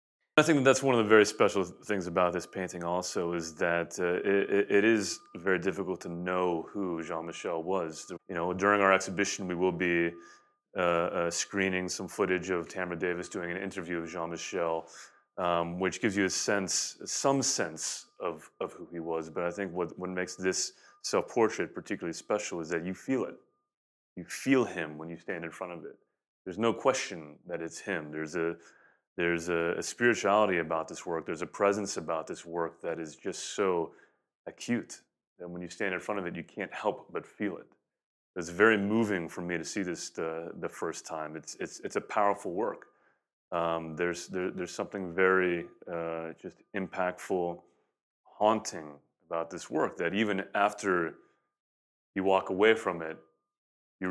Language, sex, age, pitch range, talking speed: English, male, 30-49, 85-100 Hz, 180 wpm